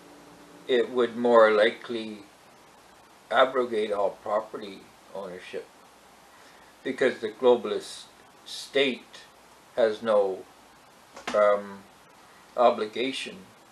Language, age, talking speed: English, 60-79, 70 wpm